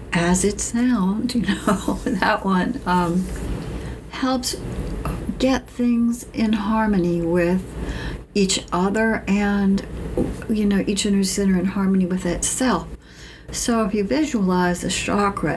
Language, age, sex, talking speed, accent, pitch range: English, 60-79, female, 125 wpm, American, 180-215 Hz